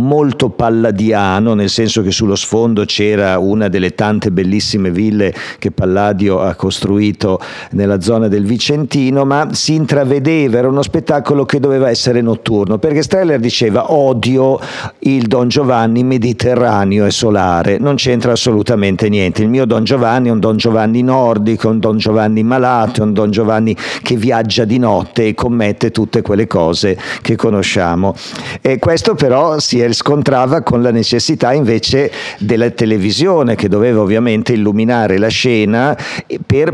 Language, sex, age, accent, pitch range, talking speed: Italian, male, 50-69, native, 105-125 Hz, 150 wpm